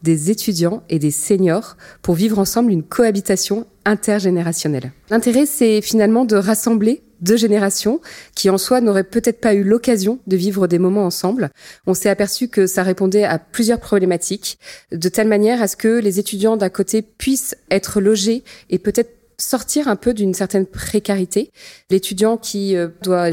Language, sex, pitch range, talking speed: French, female, 180-215 Hz, 165 wpm